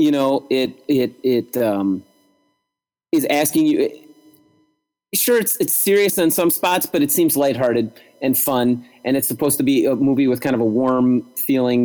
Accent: American